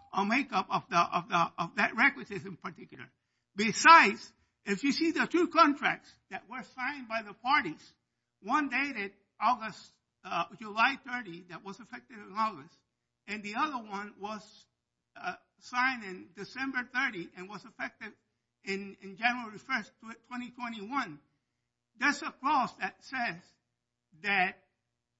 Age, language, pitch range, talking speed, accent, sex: 60-79, English, 180-260 Hz, 145 wpm, American, male